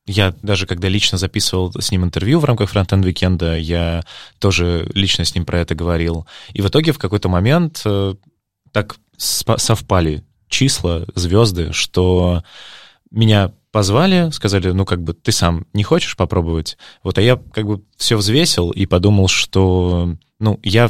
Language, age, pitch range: Russian, 20-39, 95-120 Hz